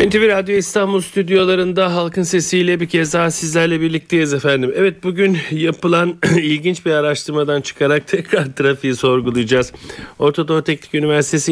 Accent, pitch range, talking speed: native, 125-150 Hz, 130 wpm